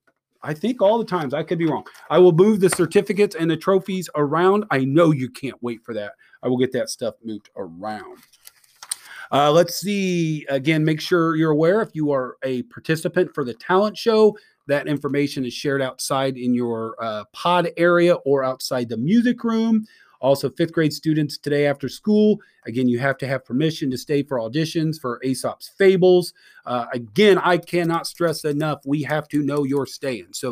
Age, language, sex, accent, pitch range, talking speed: 40-59, English, male, American, 130-180 Hz, 190 wpm